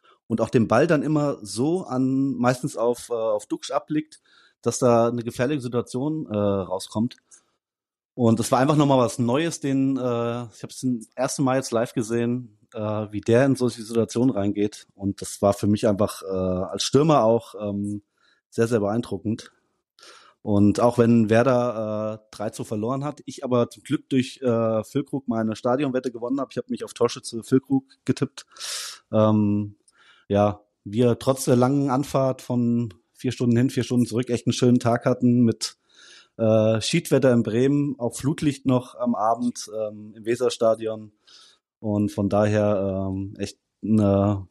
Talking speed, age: 170 wpm, 30-49